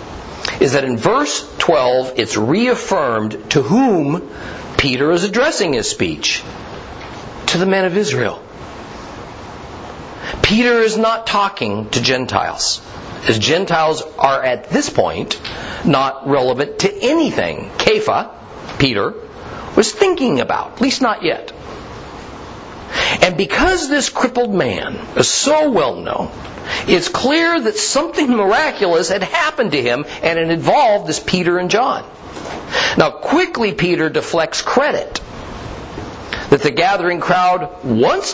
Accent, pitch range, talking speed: American, 160-230 Hz, 125 wpm